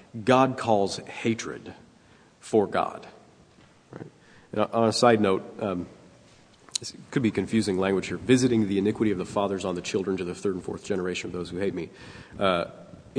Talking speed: 170 wpm